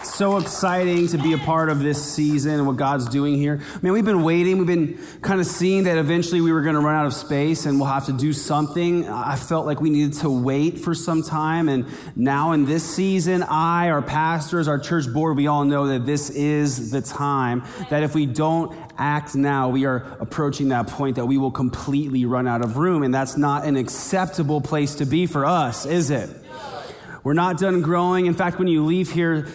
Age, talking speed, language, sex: 30-49, 225 wpm, English, male